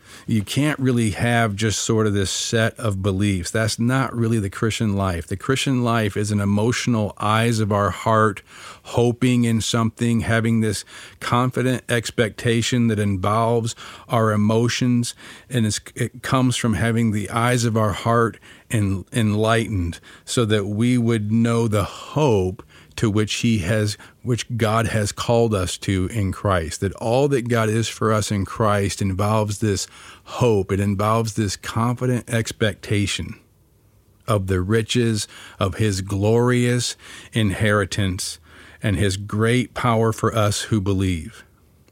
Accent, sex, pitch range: American, male, 100-115 Hz